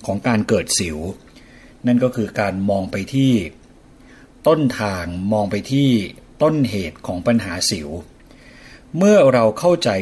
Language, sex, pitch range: Thai, male, 100-130 Hz